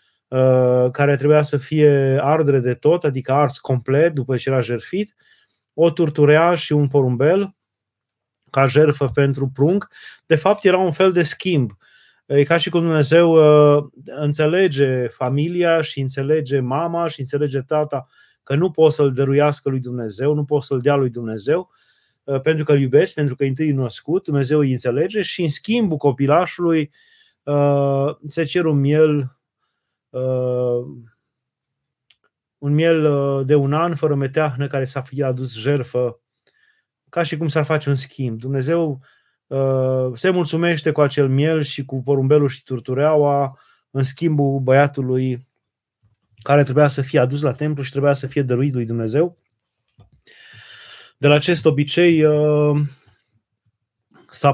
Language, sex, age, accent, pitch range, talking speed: Romanian, male, 20-39, native, 130-155 Hz, 140 wpm